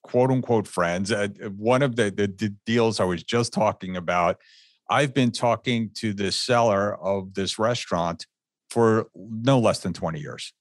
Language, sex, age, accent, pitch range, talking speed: English, male, 50-69, American, 100-125 Hz, 170 wpm